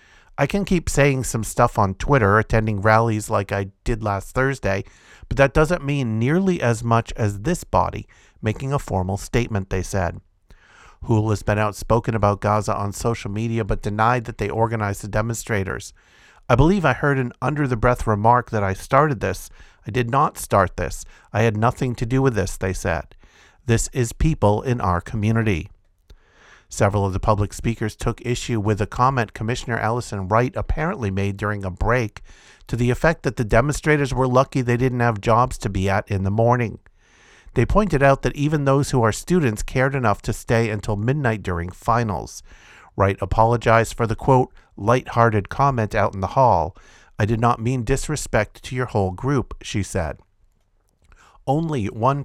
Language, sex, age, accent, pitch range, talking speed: English, male, 50-69, American, 100-125 Hz, 180 wpm